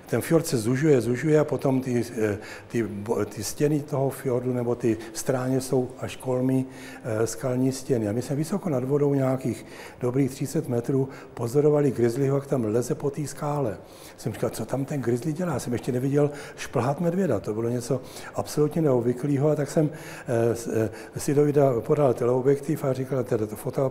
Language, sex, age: Czech, male, 60-79